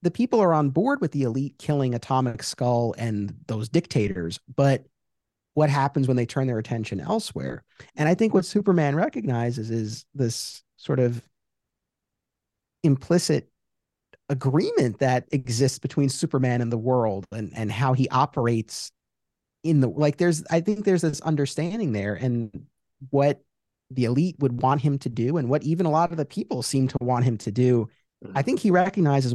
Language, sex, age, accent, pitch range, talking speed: English, male, 30-49, American, 120-155 Hz, 170 wpm